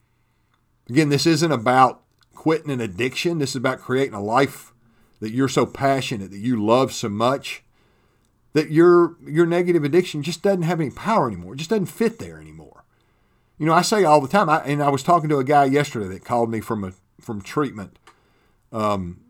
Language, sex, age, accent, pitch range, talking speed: English, male, 50-69, American, 115-155 Hz, 195 wpm